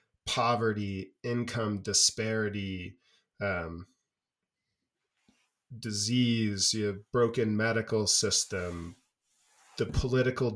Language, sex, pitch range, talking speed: English, male, 105-120 Hz, 70 wpm